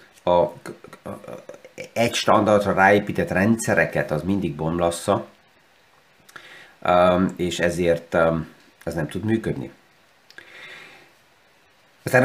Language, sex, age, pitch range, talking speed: Hungarian, male, 30-49, 95-110 Hz, 75 wpm